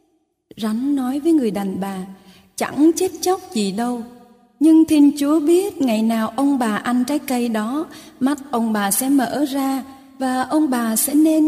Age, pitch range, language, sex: 20-39, 225-290 Hz, Vietnamese, female